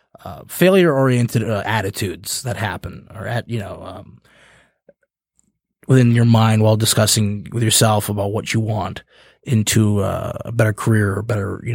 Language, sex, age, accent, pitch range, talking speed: English, male, 20-39, American, 110-130 Hz, 155 wpm